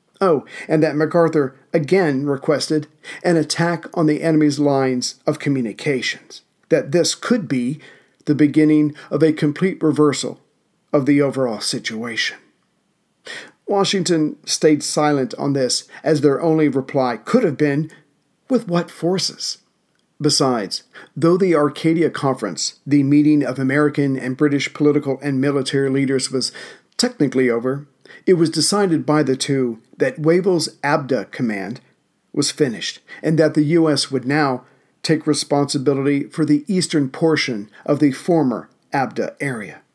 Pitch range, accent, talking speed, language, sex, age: 135-160 Hz, American, 135 wpm, English, male, 50-69